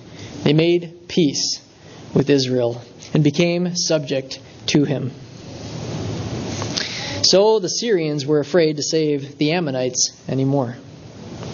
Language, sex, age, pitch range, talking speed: English, male, 20-39, 145-225 Hz, 105 wpm